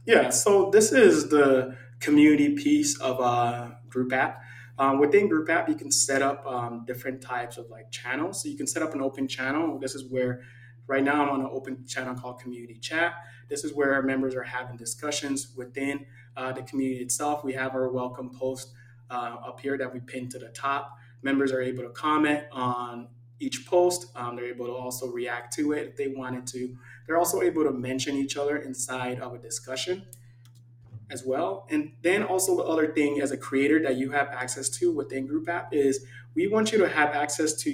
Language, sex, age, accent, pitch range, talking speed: English, male, 20-39, American, 125-150 Hz, 205 wpm